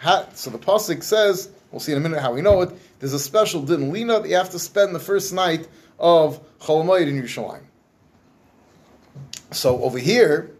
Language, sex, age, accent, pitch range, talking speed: English, male, 30-49, American, 135-185 Hz, 190 wpm